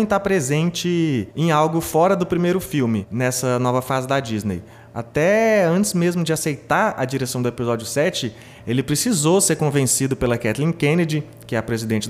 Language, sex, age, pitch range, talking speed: Portuguese, male, 20-39, 125-180 Hz, 170 wpm